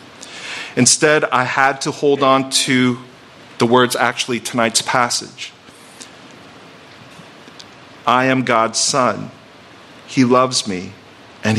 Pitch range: 110-130 Hz